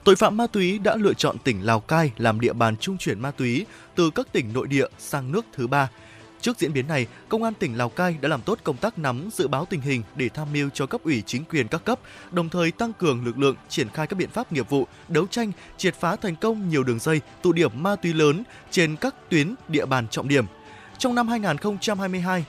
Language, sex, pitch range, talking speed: Vietnamese, male, 135-200 Hz, 245 wpm